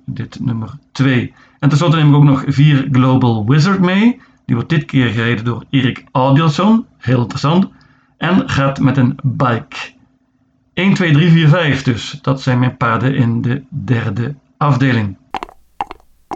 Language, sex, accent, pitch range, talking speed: Dutch, male, Dutch, 125-145 Hz, 155 wpm